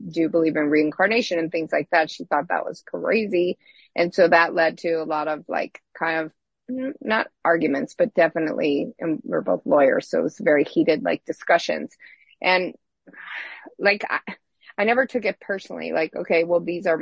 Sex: female